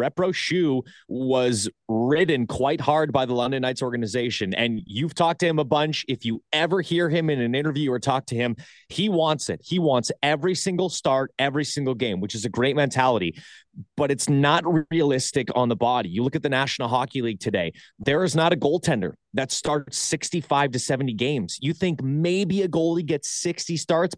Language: English